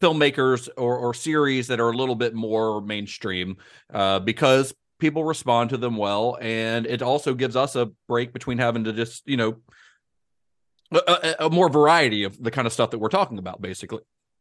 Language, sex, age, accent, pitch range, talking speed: English, male, 40-59, American, 110-145 Hz, 190 wpm